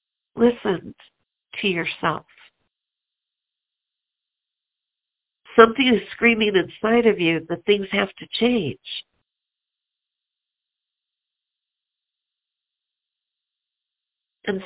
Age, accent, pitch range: 60-79, American, 165-215 Hz